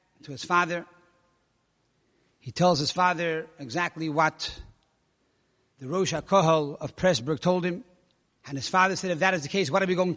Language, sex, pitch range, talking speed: English, male, 180-230 Hz, 170 wpm